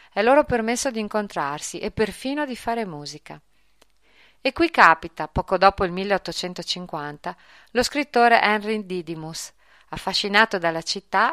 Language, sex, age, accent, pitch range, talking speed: Italian, female, 40-59, native, 165-215 Hz, 125 wpm